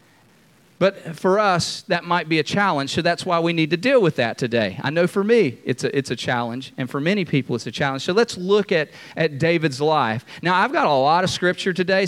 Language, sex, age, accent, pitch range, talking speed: English, male, 40-59, American, 140-170 Hz, 245 wpm